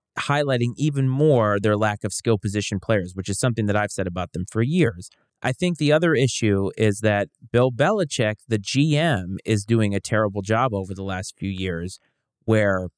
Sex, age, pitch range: male, 30-49, 100-130 Hz